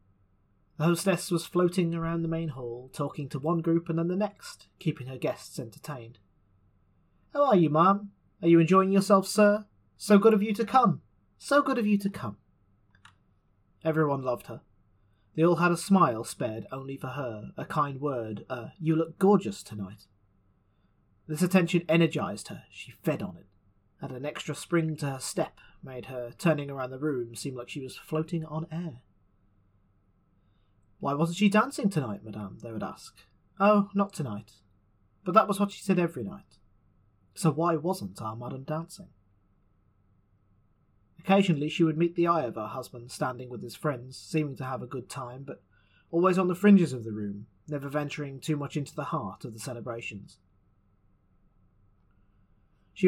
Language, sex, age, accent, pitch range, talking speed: English, male, 30-49, British, 100-165 Hz, 175 wpm